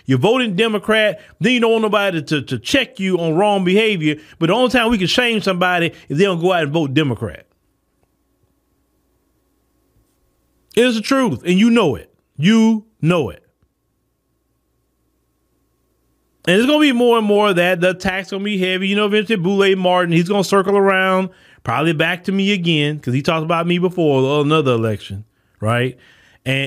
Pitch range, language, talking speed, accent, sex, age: 140-195 Hz, English, 180 wpm, American, male, 30-49